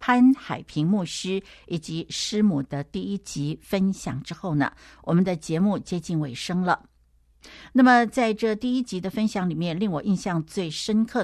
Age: 60-79